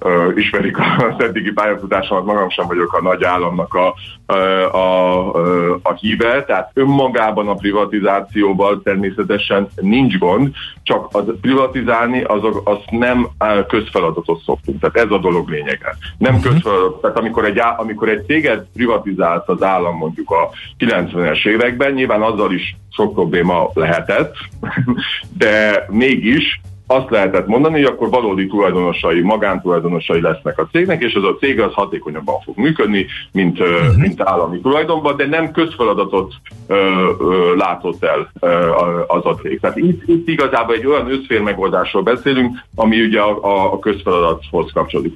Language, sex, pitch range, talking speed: Hungarian, male, 95-125 Hz, 135 wpm